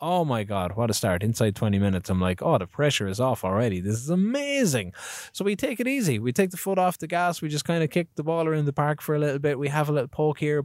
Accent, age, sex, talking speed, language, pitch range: Irish, 20-39, male, 295 wpm, English, 110-155 Hz